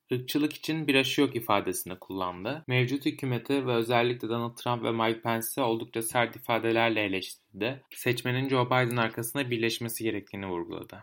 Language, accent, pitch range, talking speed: Turkish, native, 120-140 Hz, 145 wpm